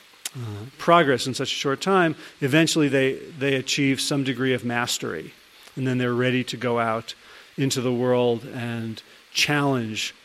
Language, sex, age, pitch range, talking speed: English, male, 40-59, 130-170 Hz, 160 wpm